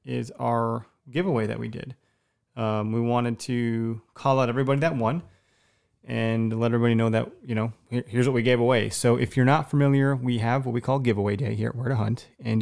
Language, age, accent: English, 30-49, American